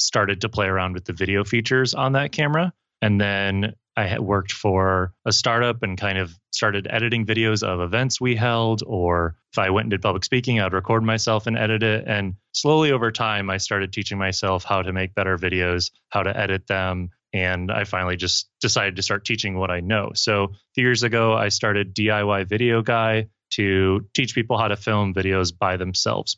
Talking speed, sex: 205 wpm, male